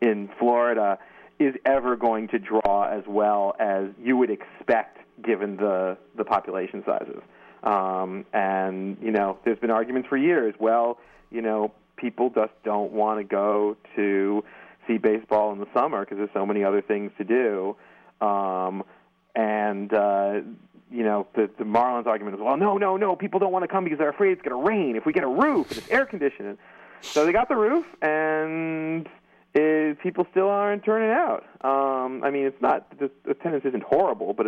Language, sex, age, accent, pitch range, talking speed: English, male, 40-59, American, 105-135 Hz, 185 wpm